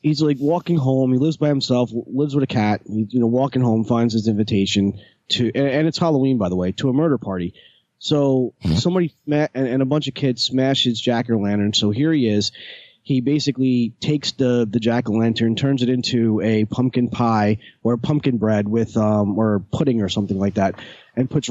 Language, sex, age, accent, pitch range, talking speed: English, male, 30-49, American, 115-150 Hz, 210 wpm